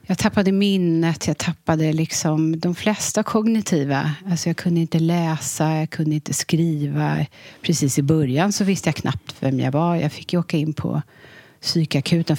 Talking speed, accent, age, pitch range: 165 wpm, Swedish, 30-49, 155-200 Hz